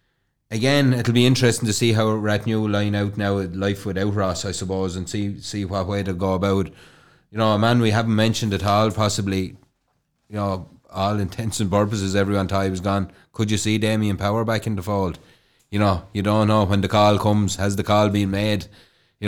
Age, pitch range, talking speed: 30-49, 100-115 Hz, 220 wpm